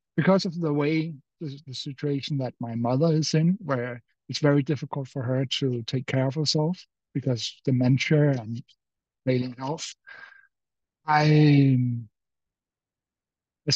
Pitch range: 130-155 Hz